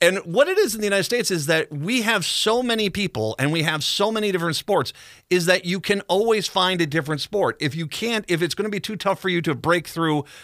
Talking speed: 265 wpm